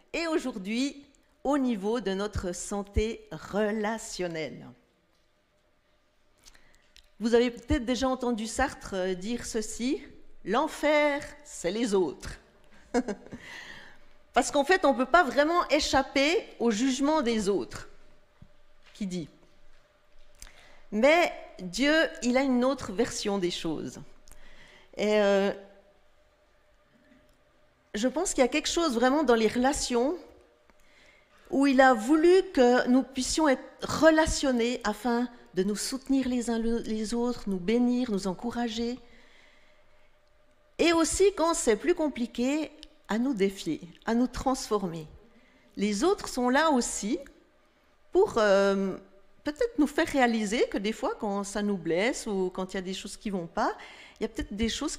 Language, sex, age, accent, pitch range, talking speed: French, female, 40-59, French, 210-290 Hz, 135 wpm